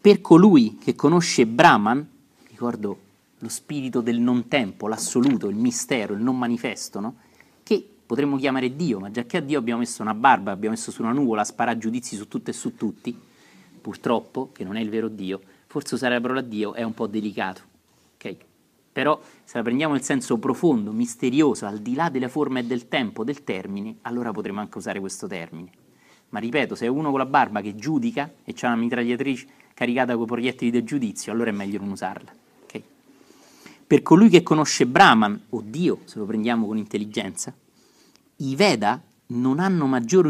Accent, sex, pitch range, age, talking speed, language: native, male, 115-165 Hz, 30-49, 190 wpm, Italian